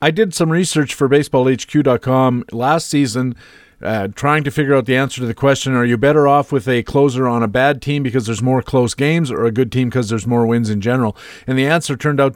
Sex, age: male, 40-59